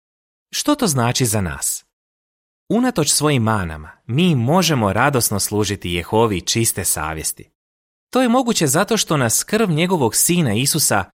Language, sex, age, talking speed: Croatian, male, 30-49, 135 wpm